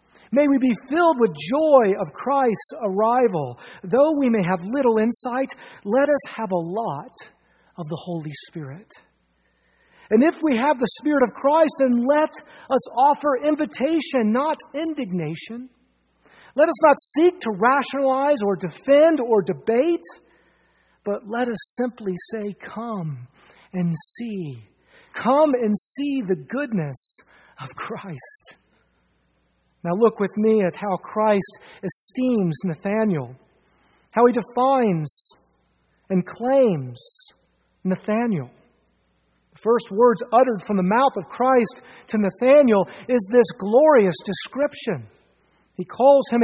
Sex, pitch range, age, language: male, 180-265 Hz, 40-59, English